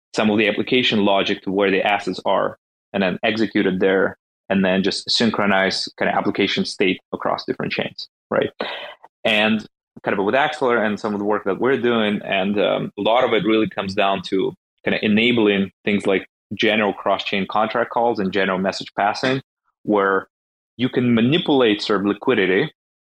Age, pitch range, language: 20-39, 95-115 Hz, English